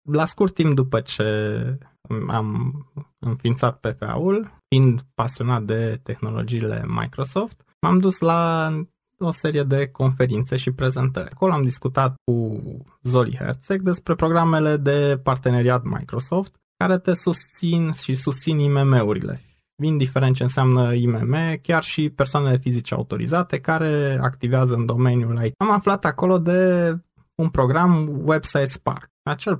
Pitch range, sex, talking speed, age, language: 125-170 Hz, male, 130 wpm, 20-39, Romanian